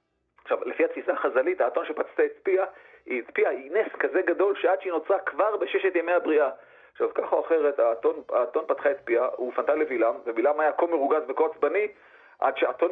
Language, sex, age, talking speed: Hebrew, male, 40-59, 180 wpm